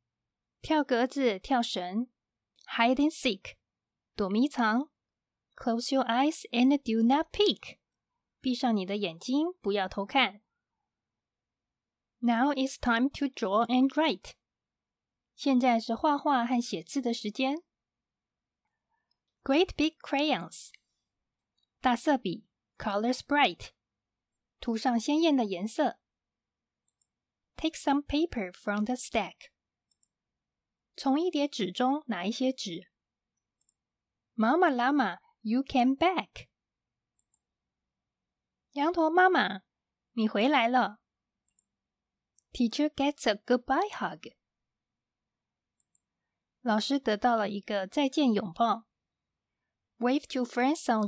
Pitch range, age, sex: 215-280 Hz, 20-39, female